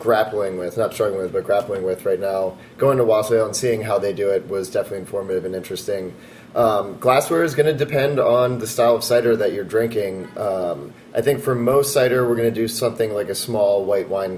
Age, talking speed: 20-39, 225 wpm